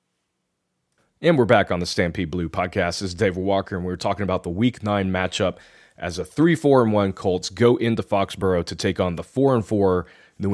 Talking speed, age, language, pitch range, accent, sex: 200 wpm, 30-49, English, 95-120 Hz, American, male